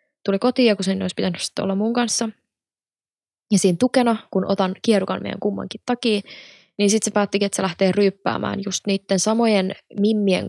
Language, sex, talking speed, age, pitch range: Finnish, female, 175 wpm, 20-39, 185-215 Hz